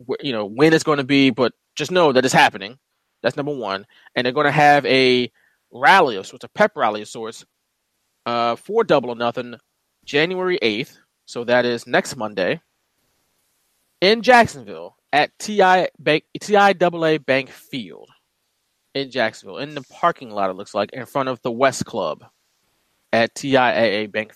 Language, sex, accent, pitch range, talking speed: English, male, American, 115-170 Hz, 165 wpm